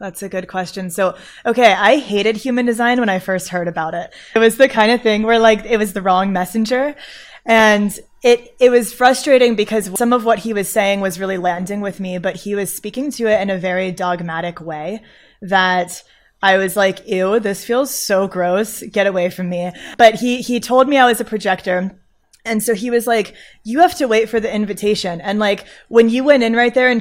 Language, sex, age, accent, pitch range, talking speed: English, female, 20-39, American, 195-250 Hz, 220 wpm